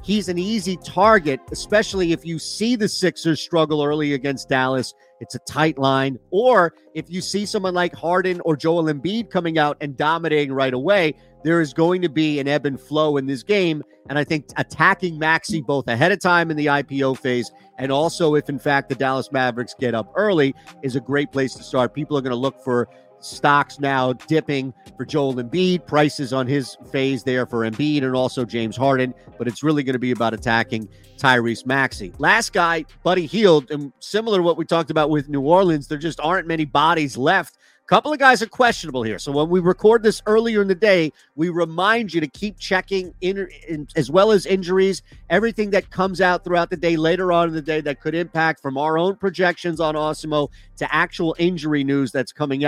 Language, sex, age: English, male, 40-59